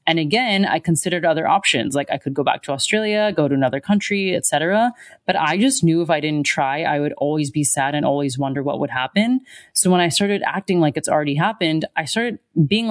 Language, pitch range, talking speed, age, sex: English, 150-195 Hz, 230 wpm, 20-39, female